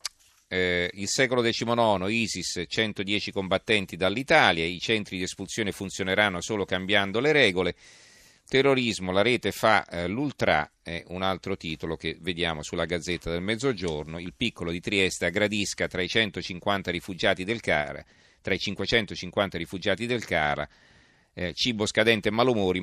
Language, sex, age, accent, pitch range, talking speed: Italian, male, 40-59, native, 90-110 Hz, 145 wpm